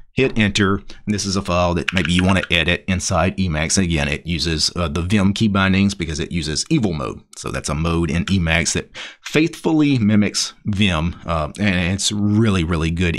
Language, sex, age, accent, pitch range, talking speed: English, male, 40-59, American, 85-105 Hz, 205 wpm